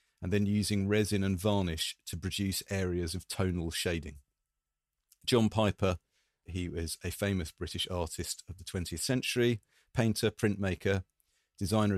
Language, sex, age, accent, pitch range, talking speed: English, male, 40-59, British, 85-100 Hz, 135 wpm